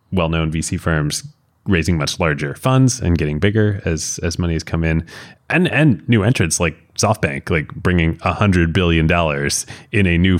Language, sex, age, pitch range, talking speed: English, male, 20-39, 80-110 Hz, 175 wpm